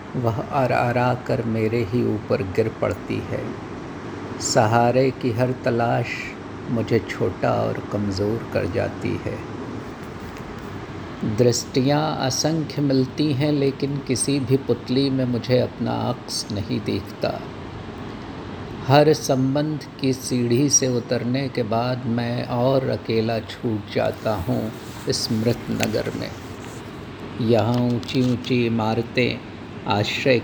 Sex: male